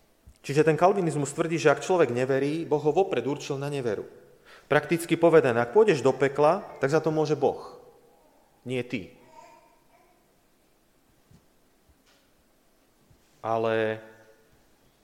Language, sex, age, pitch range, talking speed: Slovak, male, 30-49, 125-160 Hz, 110 wpm